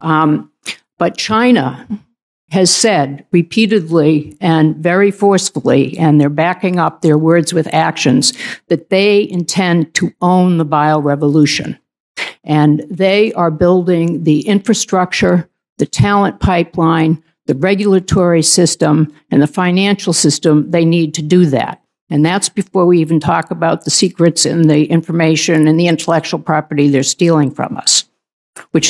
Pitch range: 155-185 Hz